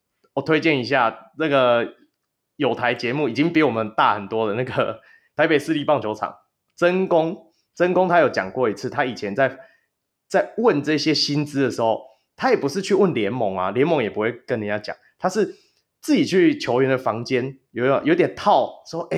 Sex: male